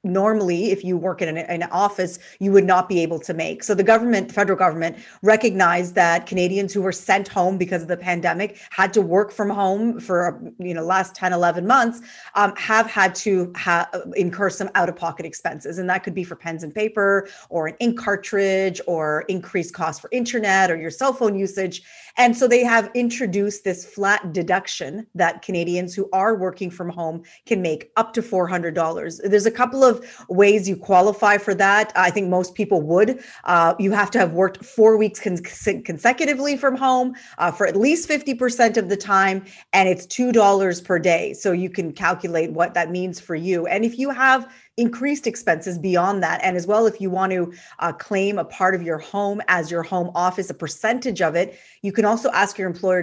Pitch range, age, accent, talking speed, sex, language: 175-215 Hz, 30-49, American, 200 wpm, female, English